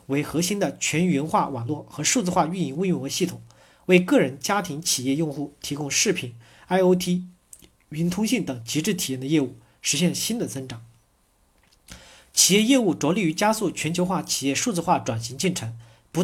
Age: 40-59